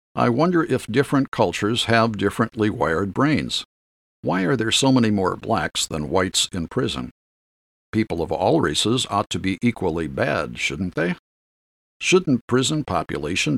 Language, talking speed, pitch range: English, 150 wpm, 85-115 Hz